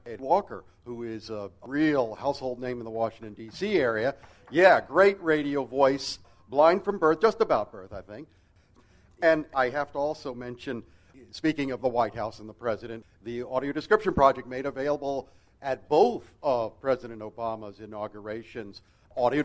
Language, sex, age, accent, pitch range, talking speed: English, male, 50-69, American, 115-180 Hz, 160 wpm